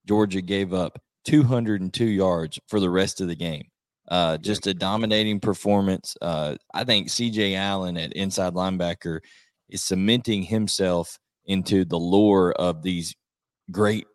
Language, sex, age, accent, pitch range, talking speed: English, male, 20-39, American, 90-105 Hz, 140 wpm